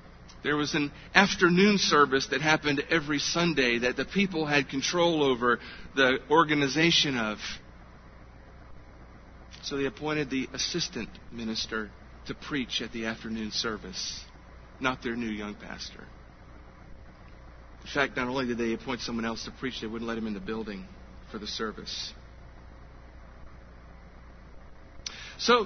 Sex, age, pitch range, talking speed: male, 40-59, 90-150 Hz, 135 wpm